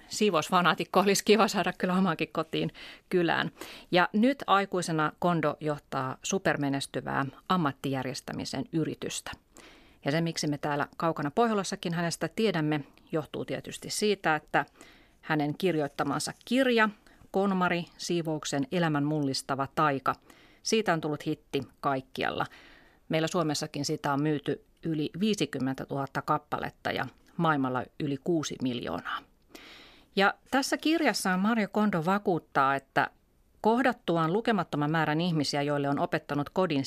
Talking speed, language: 115 wpm, Finnish